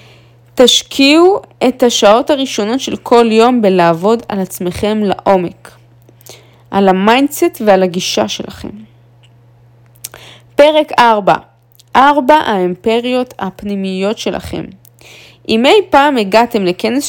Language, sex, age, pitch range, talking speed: Hebrew, female, 20-39, 170-255 Hz, 95 wpm